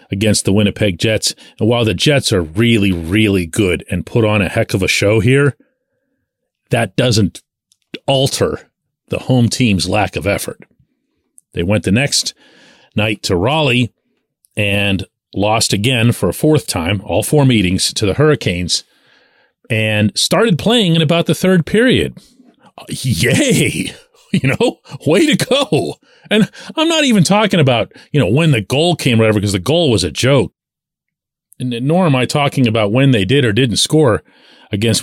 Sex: male